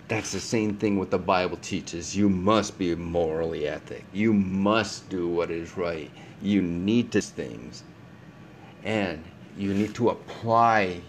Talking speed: 150 wpm